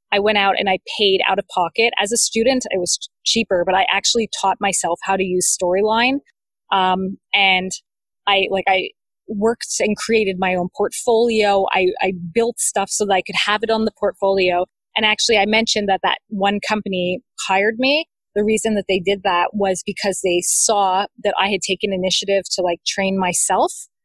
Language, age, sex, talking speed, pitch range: English, 20-39, female, 190 wpm, 190-225 Hz